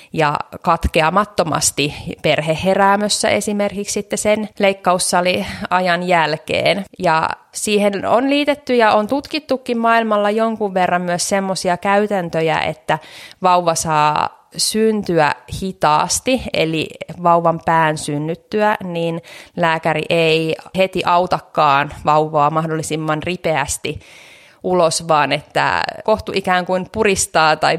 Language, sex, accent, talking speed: Finnish, female, native, 100 wpm